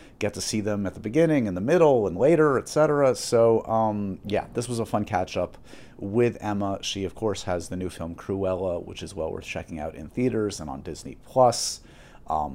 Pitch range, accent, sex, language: 95-130 Hz, American, male, English